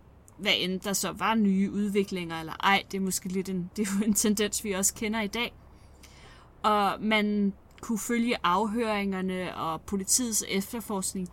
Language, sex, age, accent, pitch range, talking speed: Danish, female, 20-39, native, 190-225 Hz, 165 wpm